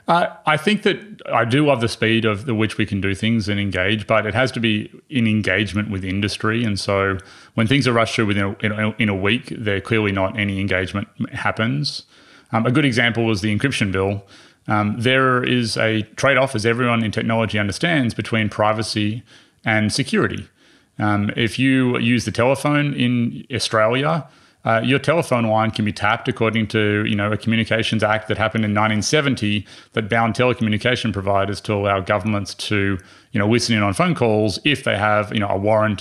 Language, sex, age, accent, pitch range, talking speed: English, male, 30-49, Australian, 105-115 Hz, 195 wpm